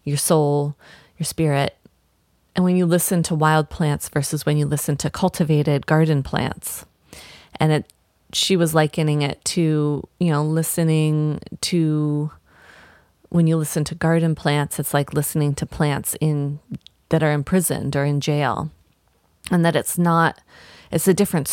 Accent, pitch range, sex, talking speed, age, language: American, 150-175 Hz, female, 155 wpm, 30-49, English